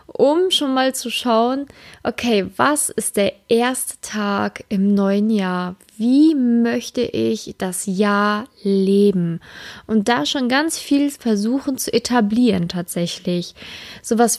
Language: German